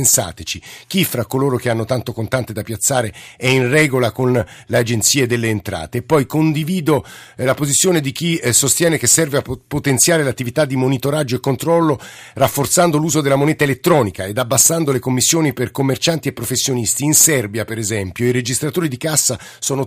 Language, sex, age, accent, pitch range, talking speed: Italian, male, 50-69, native, 120-150 Hz, 170 wpm